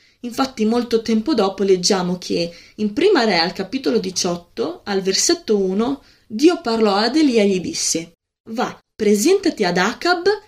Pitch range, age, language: 200-260 Hz, 20-39, Italian